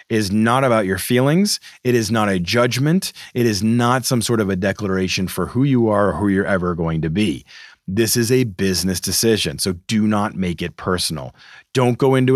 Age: 30-49